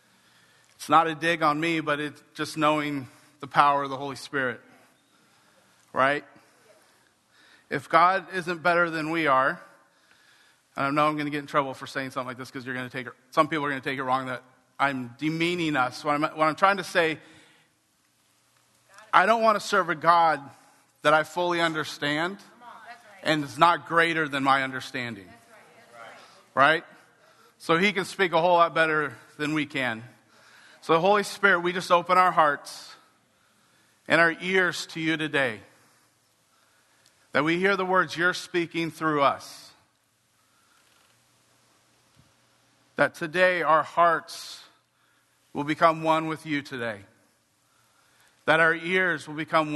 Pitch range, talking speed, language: 135-165 Hz, 155 wpm, English